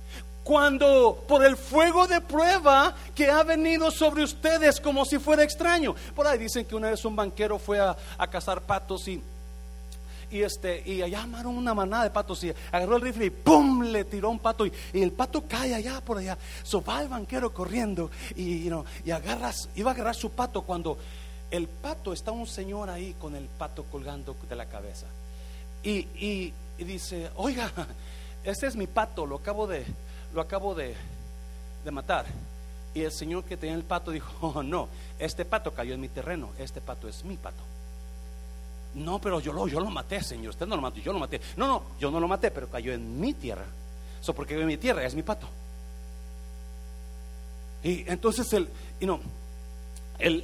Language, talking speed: Spanish, 195 wpm